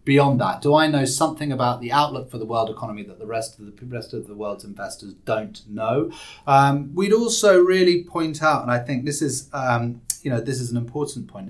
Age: 30-49